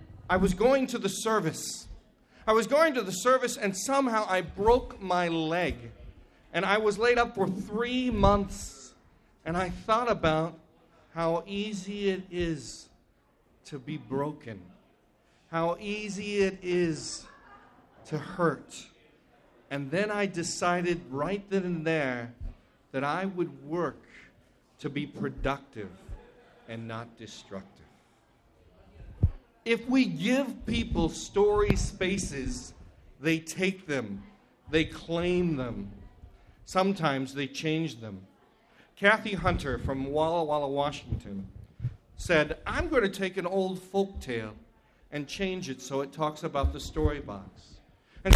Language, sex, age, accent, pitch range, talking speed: English, male, 40-59, American, 120-195 Hz, 130 wpm